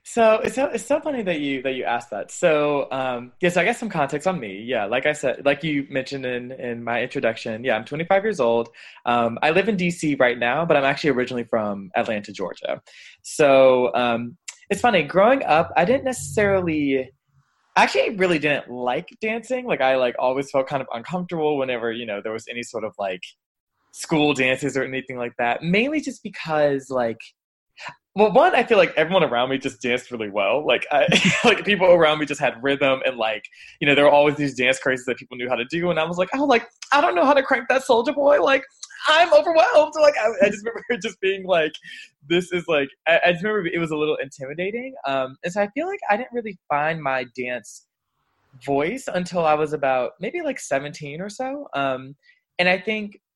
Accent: American